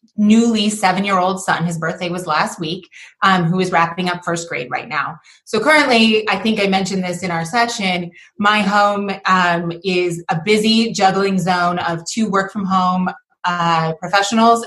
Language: English